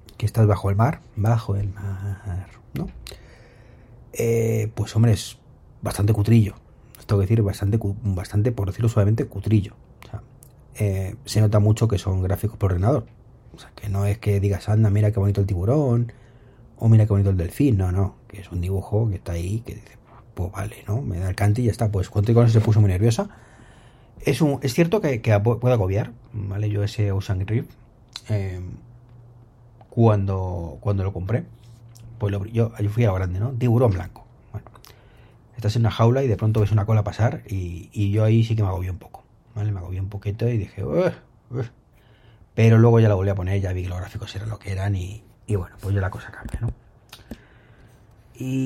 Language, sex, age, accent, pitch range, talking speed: Spanish, male, 30-49, Spanish, 100-115 Hz, 210 wpm